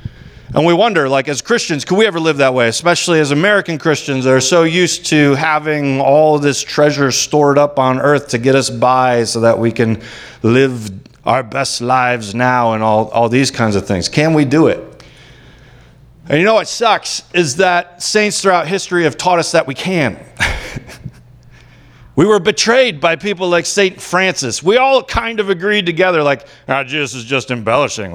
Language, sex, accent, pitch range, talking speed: English, male, American, 130-195 Hz, 190 wpm